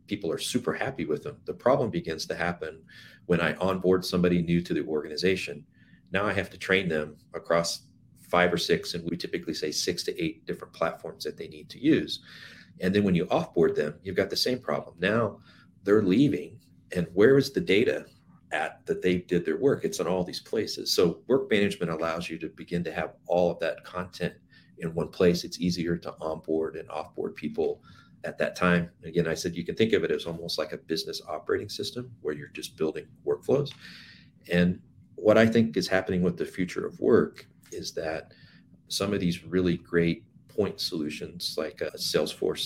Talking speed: 200 wpm